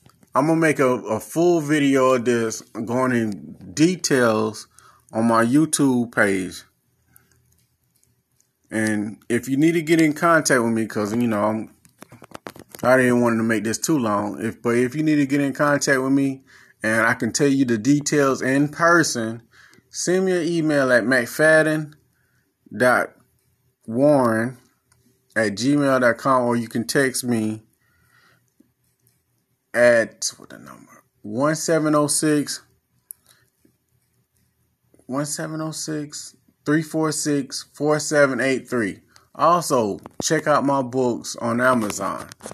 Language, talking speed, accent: English, 120 wpm, American